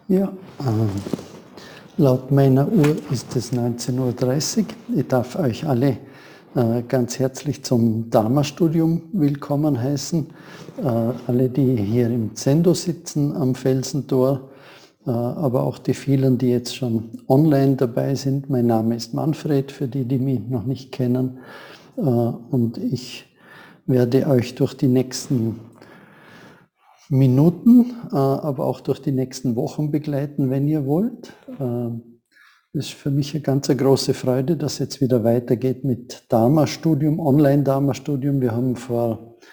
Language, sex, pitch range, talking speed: German, male, 125-150 Hz, 140 wpm